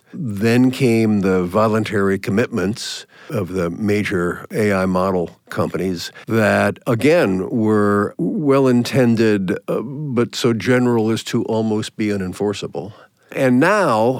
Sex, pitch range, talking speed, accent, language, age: male, 100-120 Hz, 110 wpm, American, English, 50-69